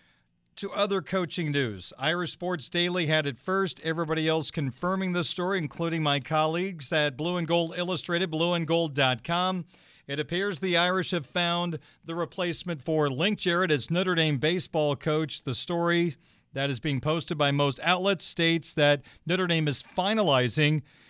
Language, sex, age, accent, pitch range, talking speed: English, male, 40-59, American, 145-180 Hz, 155 wpm